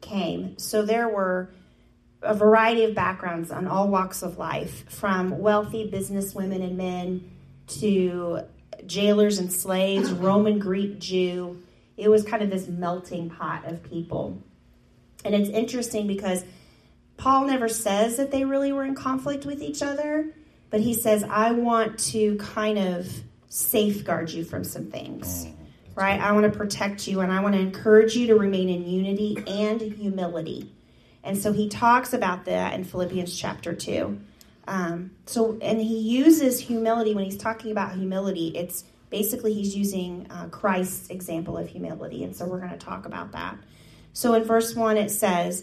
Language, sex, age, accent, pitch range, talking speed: English, female, 30-49, American, 185-225 Hz, 165 wpm